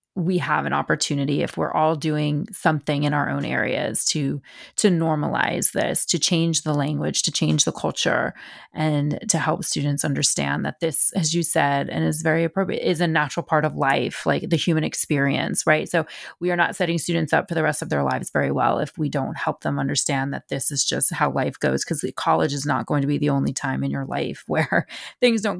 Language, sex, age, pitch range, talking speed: English, female, 30-49, 145-180 Hz, 225 wpm